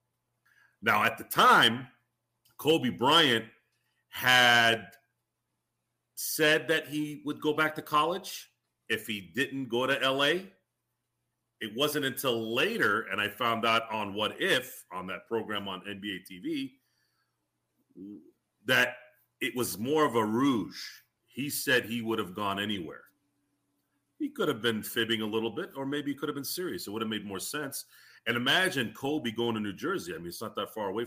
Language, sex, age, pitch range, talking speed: English, male, 40-59, 110-140 Hz, 170 wpm